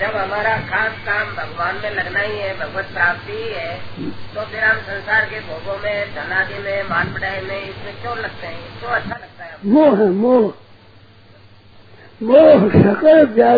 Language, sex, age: Hindi, male, 50-69